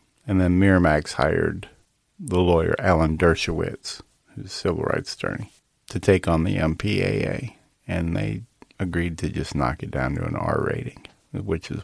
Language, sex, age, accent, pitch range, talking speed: English, male, 40-59, American, 85-100 Hz, 160 wpm